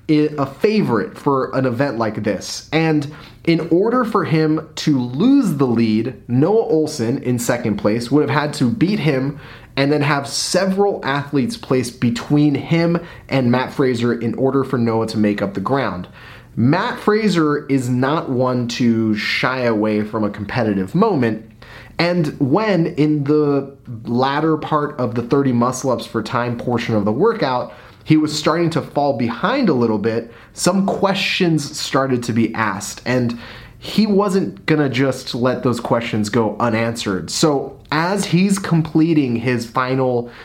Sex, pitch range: male, 115-155 Hz